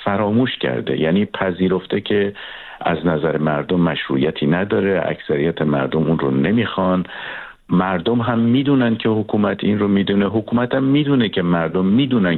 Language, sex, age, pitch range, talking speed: Persian, male, 50-69, 85-115 Hz, 140 wpm